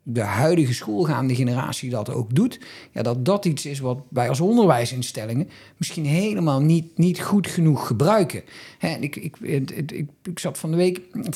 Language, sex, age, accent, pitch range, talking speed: Dutch, male, 50-69, Dutch, 140-180 Hz, 180 wpm